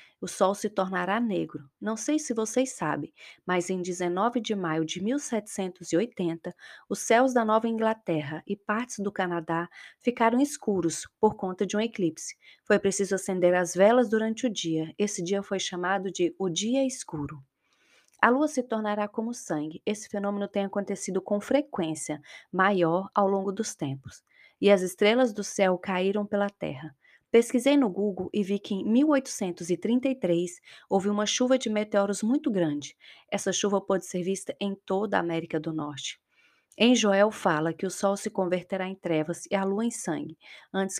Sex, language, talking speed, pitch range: female, Portuguese, 170 wpm, 180-220 Hz